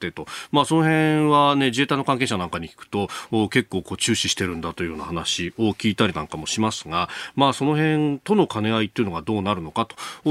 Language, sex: Japanese, male